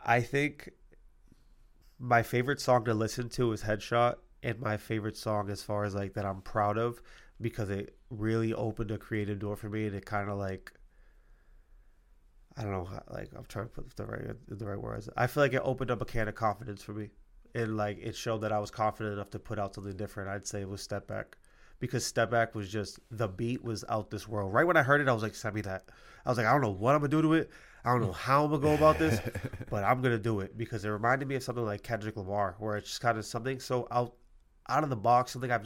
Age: 20-39